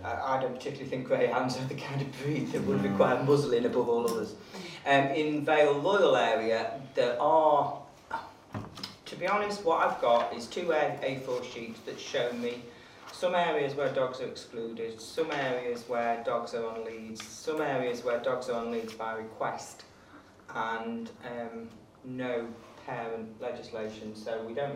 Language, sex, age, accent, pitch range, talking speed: English, male, 30-49, British, 115-145 Hz, 160 wpm